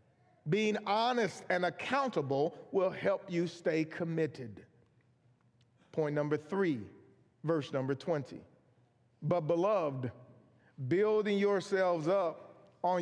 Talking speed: 95 wpm